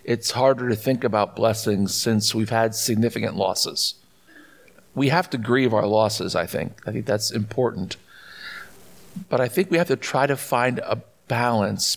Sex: male